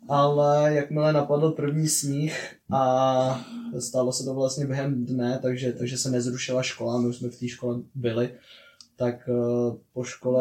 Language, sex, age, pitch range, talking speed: Czech, male, 20-39, 125-150 Hz, 160 wpm